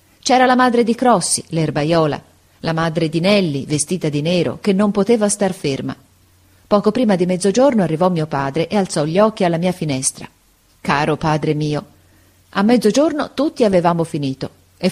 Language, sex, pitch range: Italian, female, 150-225 Hz